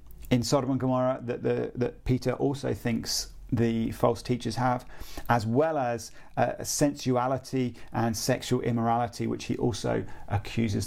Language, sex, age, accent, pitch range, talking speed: English, male, 40-59, British, 115-140 Hz, 145 wpm